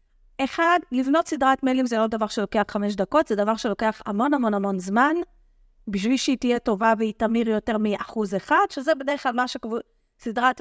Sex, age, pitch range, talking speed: female, 30-49, 230-300 Hz, 175 wpm